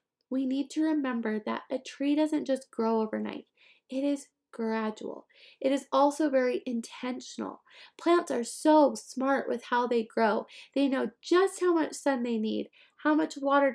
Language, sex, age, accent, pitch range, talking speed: English, female, 20-39, American, 225-285 Hz, 165 wpm